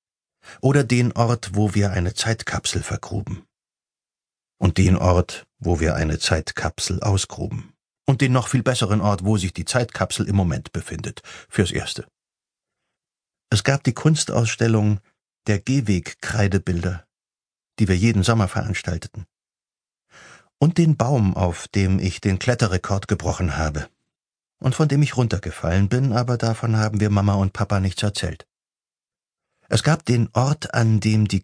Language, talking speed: German, 140 wpm